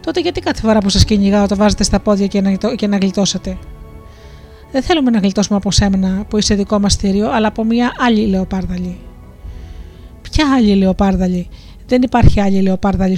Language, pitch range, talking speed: Greek, 185-235 Hz, 175 wpm